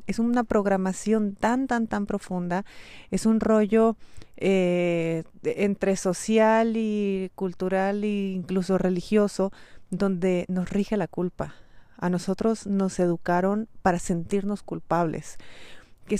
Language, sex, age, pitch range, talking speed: Spanish, female, 30-49, 180-205 Hz, 115 wpm